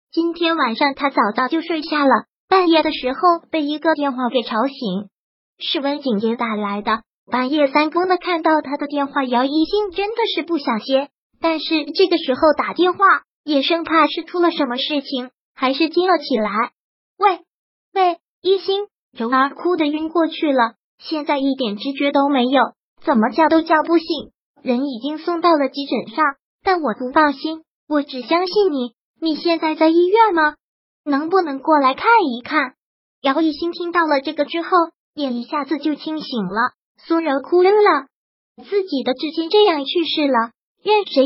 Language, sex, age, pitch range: Chinese, male, 20-39, 265-335 Hz